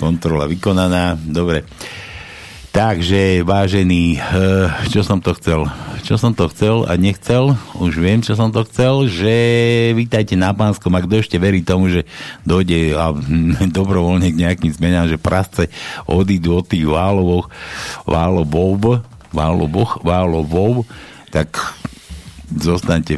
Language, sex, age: Slovak, male, 60-79